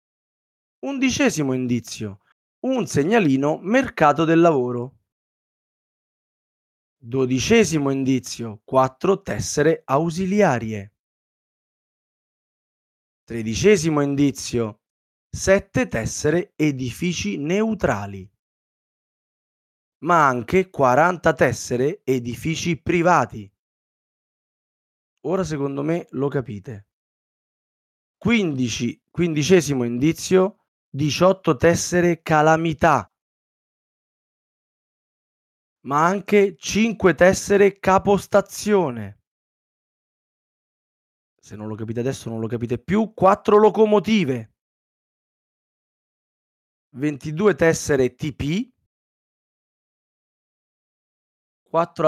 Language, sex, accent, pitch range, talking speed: Italian, male, native, 130-190 Hz, 65 wpm